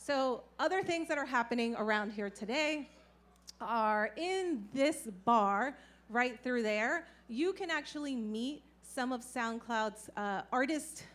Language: English